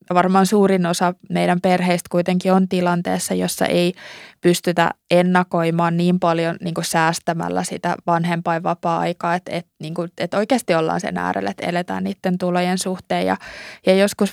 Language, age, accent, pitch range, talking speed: Finnish, 20-39, native, 175-195 Hz, 145 wpm